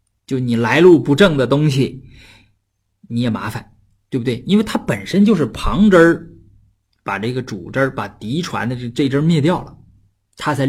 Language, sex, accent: Chinese, male, native